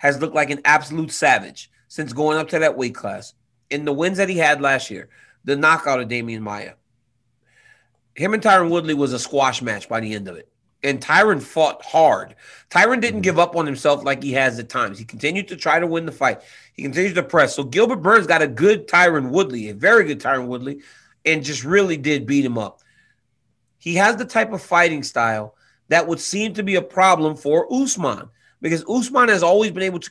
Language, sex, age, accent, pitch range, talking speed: English, male, 30-49, American, 130-190 Hz, 215 wpm